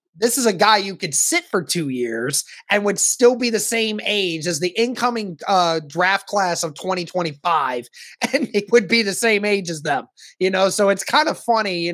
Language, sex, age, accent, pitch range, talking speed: English, male, 20-39, American, 155-205 Hz, 210 wpm